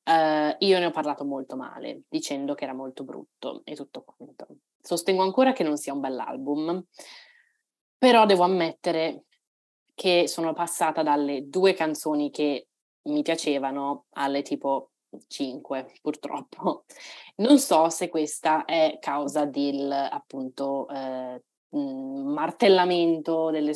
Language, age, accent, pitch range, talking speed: Italian, 20-39, native, 145-170 Hz, 130 wpm